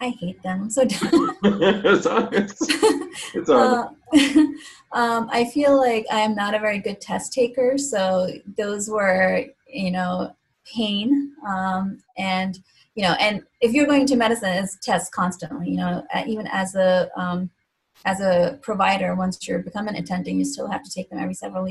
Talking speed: 160 wpm